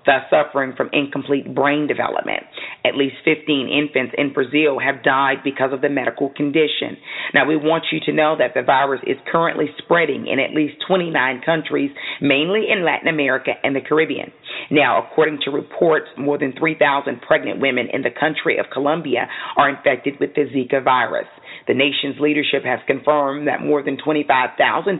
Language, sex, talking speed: English, female, 175 wpm